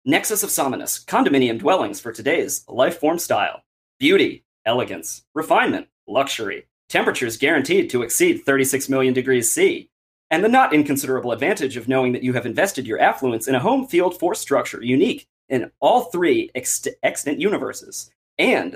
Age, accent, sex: 30-49, American, male